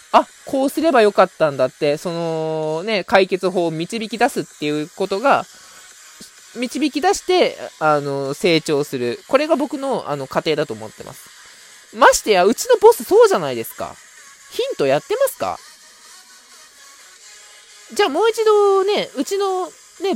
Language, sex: Japanese, male